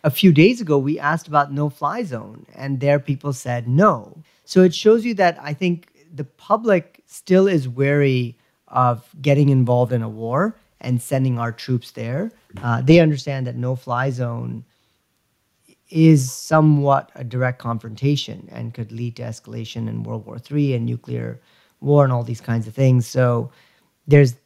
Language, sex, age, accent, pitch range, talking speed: English, male, 40-59, American, 115-145 Hz, 165 wpm